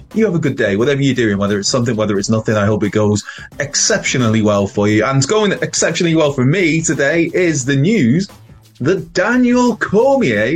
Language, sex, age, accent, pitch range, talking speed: English, male, 20-39, British, 110-145 Hz, 205 wpm